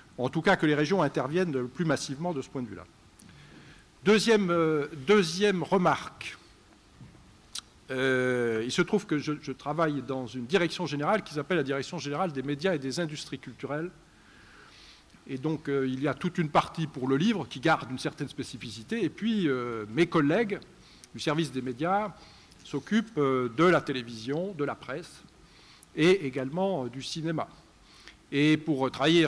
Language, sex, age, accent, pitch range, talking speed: French, male, 50-69, French, 130-180 Hz, 170 wpm